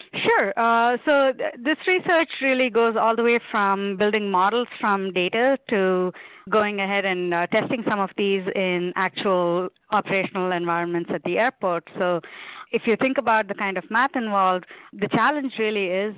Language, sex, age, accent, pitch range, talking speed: English, female, 30-49, Indian, 170-215 Hz, 165 wpm